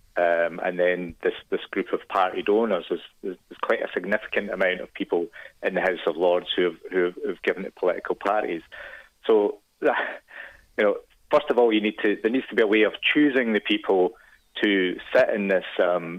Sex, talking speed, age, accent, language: male, 210 wpm, 30-49, British, English